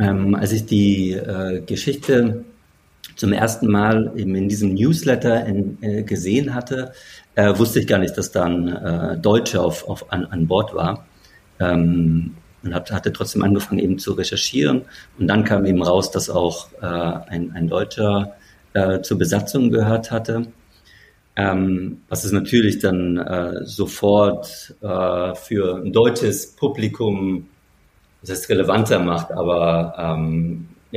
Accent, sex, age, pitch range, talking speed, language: German, male, 50-69, 95-110 Hz, 140 wpm, German